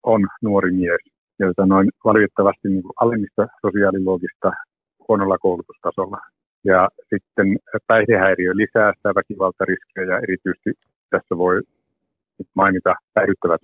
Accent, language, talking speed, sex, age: native, Finnish, 100 wpm, male, 50-69